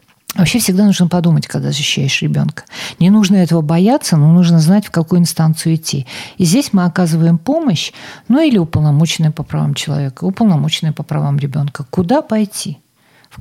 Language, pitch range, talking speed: Russian, 155-190 Hz, 160 wpm